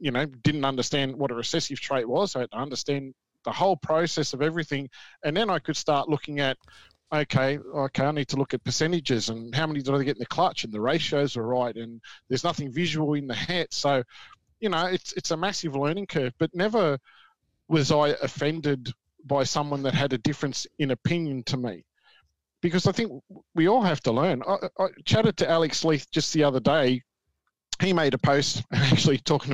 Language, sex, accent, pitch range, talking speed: English, male, Australian, 130-155 Hz, 205 wpm